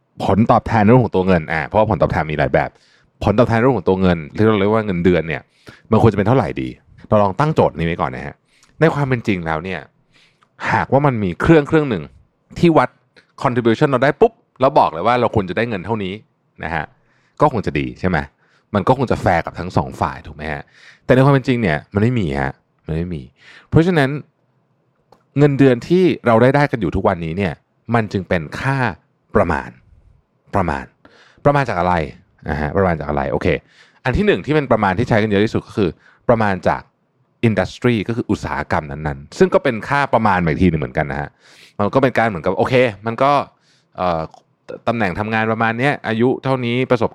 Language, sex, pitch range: Thai, male, 85-130 Hz